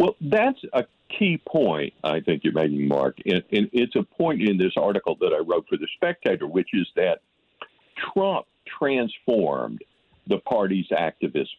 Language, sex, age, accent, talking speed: English, male, 60-79, American, 165 wpm